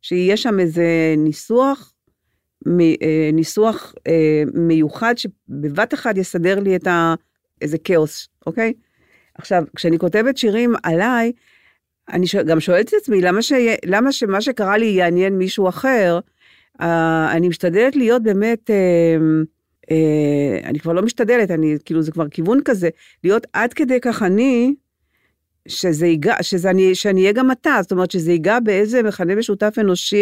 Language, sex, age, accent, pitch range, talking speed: Hebrew, female, 50-69, native, 165-220 Hz, 145 wpm